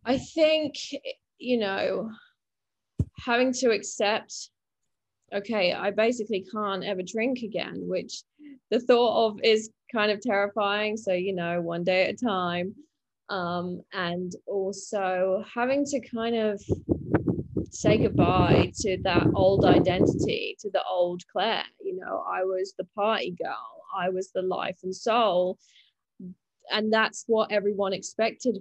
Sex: female